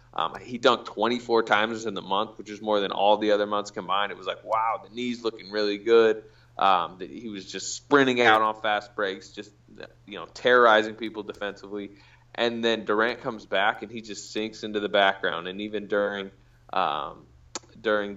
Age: 20-39